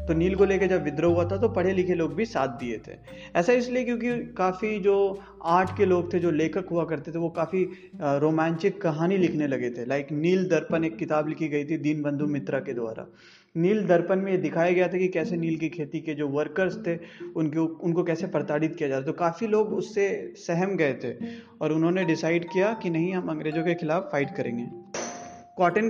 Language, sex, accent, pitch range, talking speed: Hindi, male, native, 150-185 Hz, 215 wpm